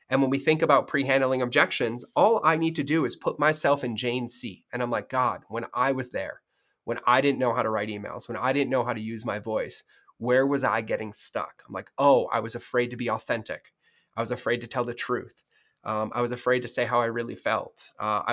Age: 20-39